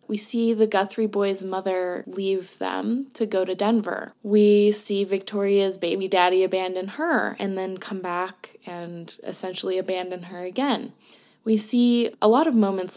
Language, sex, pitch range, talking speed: English, female, 185-230 Hz, 155 wpm